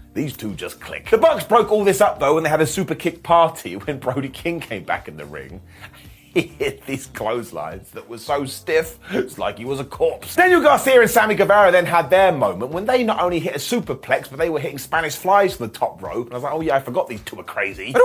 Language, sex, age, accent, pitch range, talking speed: English, male, 30-49, British, 155-220 Hz, 265 wpm